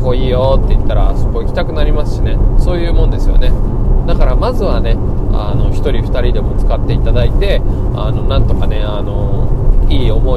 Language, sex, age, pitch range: Japanese, male, 20-39, 95-115 Hz